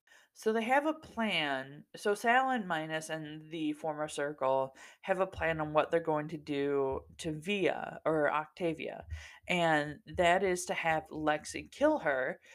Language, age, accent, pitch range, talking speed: English, 20-39, American, 150-190 Hz, 165 wpm